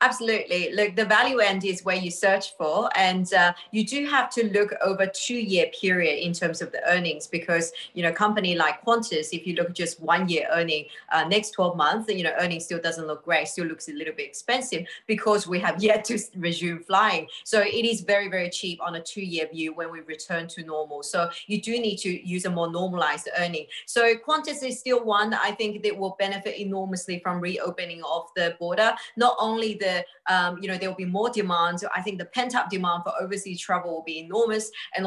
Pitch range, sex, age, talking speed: 170-215 Hz, female, 30-49, 220 wpm